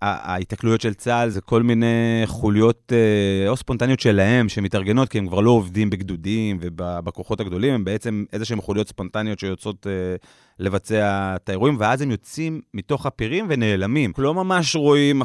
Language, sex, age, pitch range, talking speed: Hebrew, male, 30-49, 95-125 Hz, 150 wpm